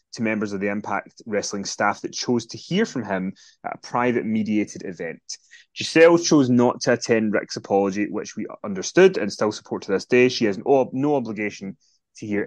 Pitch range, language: 105-135 Hz, English